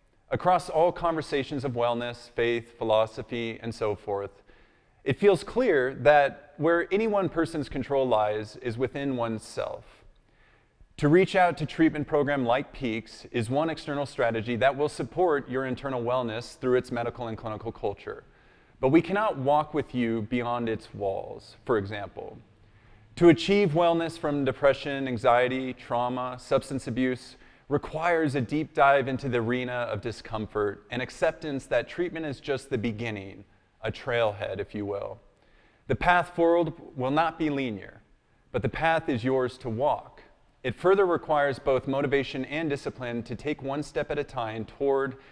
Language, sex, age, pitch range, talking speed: English, male, 30-49, 120-155 Hz, 155 wpm